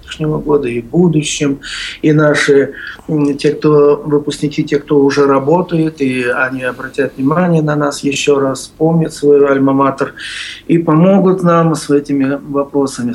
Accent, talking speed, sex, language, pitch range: native, 130 wpm, male, Russian, 130-155 Hz